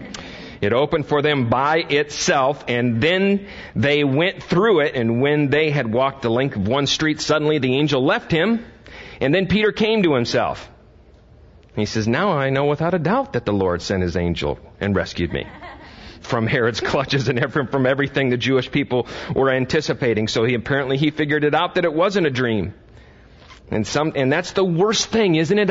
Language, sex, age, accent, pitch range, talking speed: English, male, 40-59, American, 115-180 Hz, 190 wpm